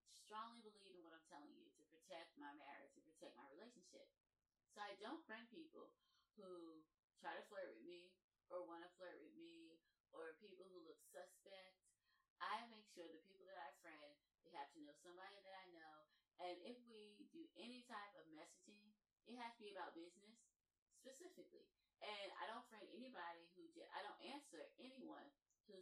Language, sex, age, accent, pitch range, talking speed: English, female, 20-39, American, 175-230 Hz, 185 wpm